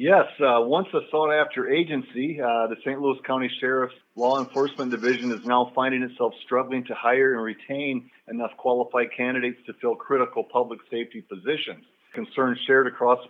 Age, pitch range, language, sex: 50-69, 110-130 Hz, English, male